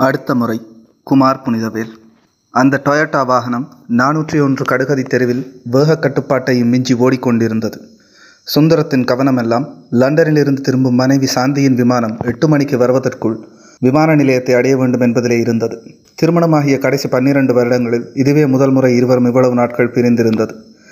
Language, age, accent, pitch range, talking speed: Tamil, 30-49, native, 125-145 Hz, 120 wpm